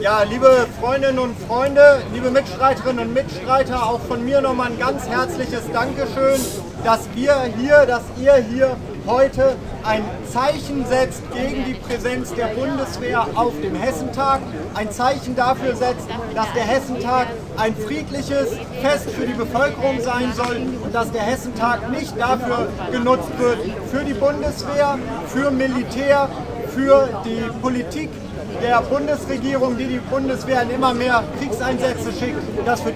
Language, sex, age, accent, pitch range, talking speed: German, male, 40-59, German, 240-270 Hz, 140 wpm